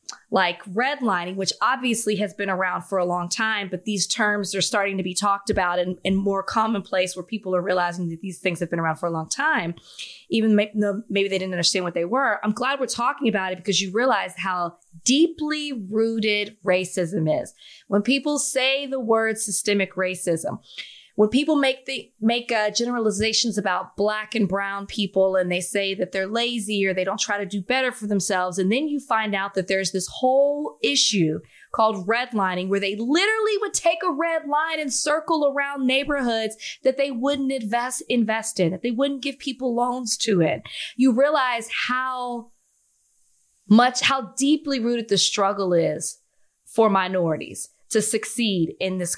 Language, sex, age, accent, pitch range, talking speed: English, female, 20-39, American, 190-255 Hz, 180 wpm